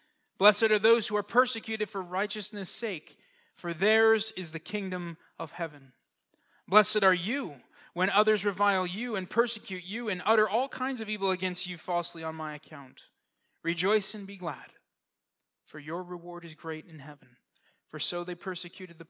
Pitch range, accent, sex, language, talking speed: 175-220 Hz, American, male, English, 170 wpm